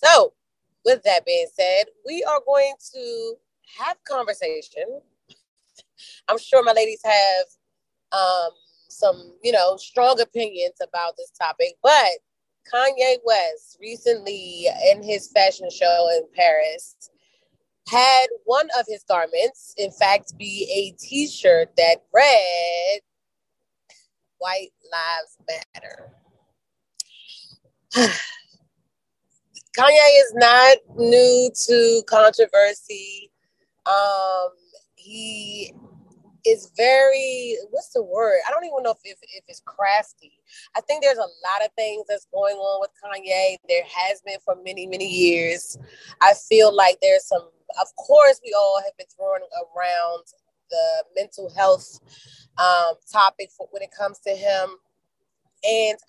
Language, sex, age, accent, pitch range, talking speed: English, female, 30-49, American, 190-285 Hz, 125 wpm